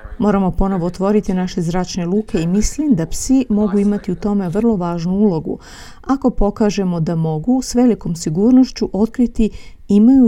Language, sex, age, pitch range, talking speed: Croatian, female, 40-59, 180-225 Hz, 150 wpm